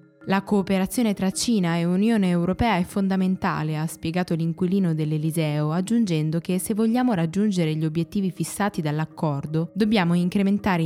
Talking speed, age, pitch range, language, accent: 135 wpm, 20-39, 160-195 Hz, Italian, native